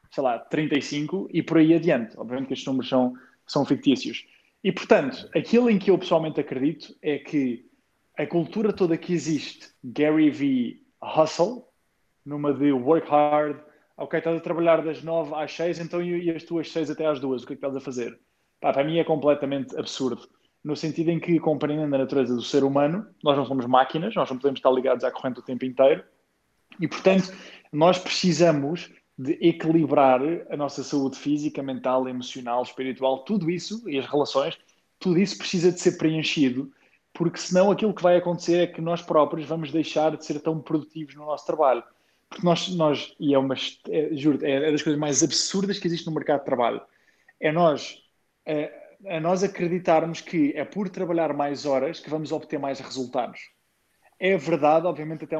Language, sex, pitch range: Portuguese, male, 140-170 Hz